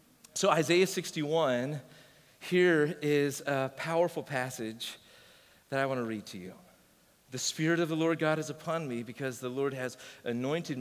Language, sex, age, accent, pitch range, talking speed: English, male, 40-59, American, 140-190 Hz, 160 wpm